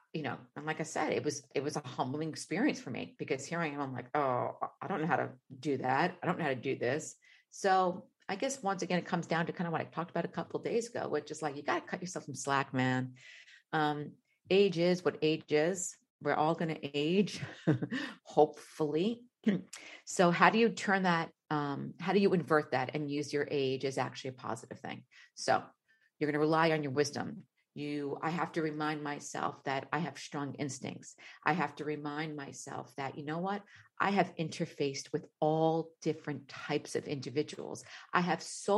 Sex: female